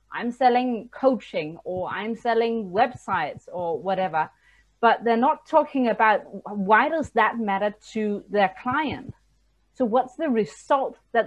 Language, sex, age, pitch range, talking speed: English, female, 30-49, 200-260 Hz, 140 wpm